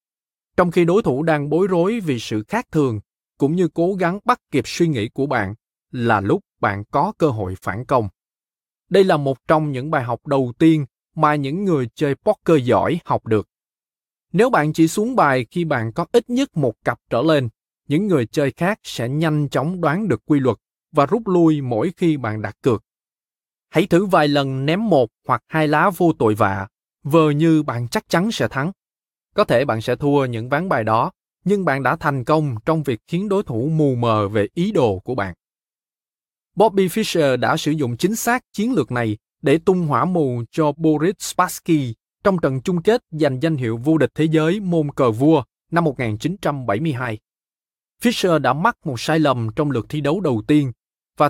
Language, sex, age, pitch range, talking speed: Vietnamese, male, 20-39, 125-170 Hz, 200 wpm